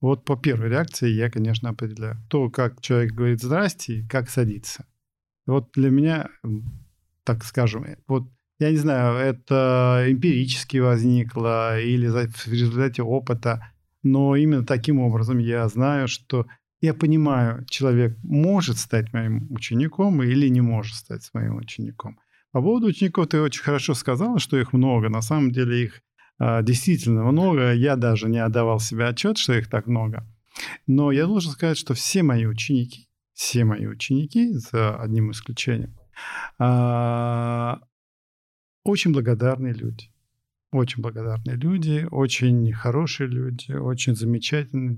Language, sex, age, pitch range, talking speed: Russian, male, 40-59, 115-140 Hz, 135 wpm